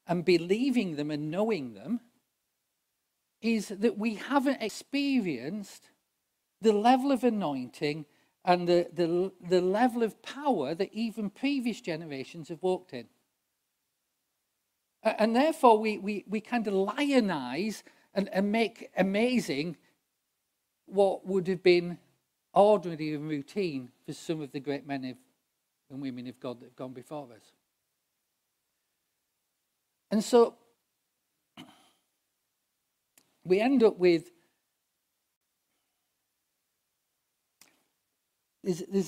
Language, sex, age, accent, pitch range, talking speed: English, male, 40-59, British, 150-220 Hz, 105 wpm